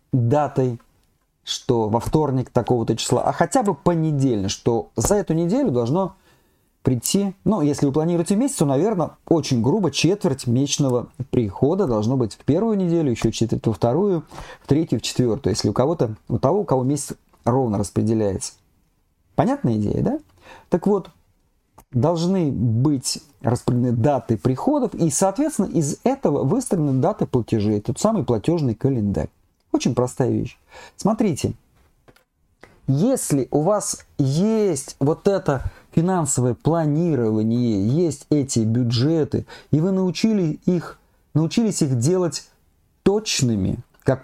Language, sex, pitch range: Russian, male, 120-175 Hz